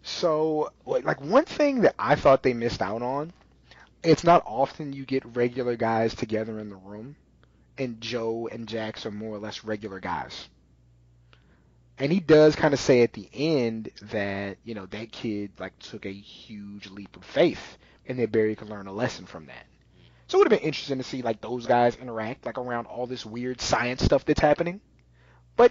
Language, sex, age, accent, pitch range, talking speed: English, male, 30-49, American, 100-125 Hz, 195 wpm